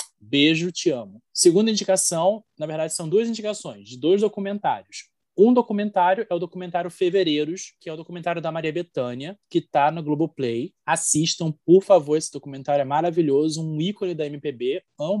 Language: Portuguese